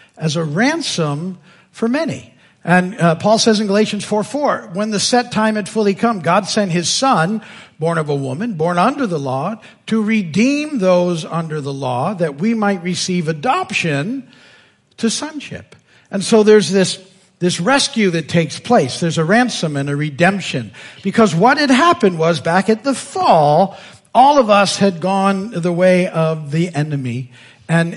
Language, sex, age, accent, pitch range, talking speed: English, male, 50-69, American, 160-225 Hz, 170 wpm